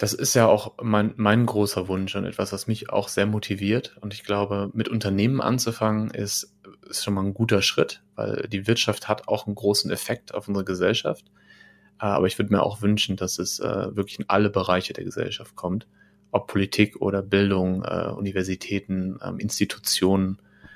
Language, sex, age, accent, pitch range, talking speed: German, male, 30-49, German, 95-110 Hz, 175 wpm